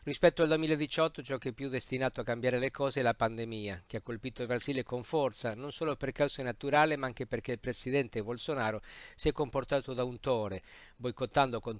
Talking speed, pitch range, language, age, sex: 210 wpm, 120-135 Hz, Italian, 50-69, male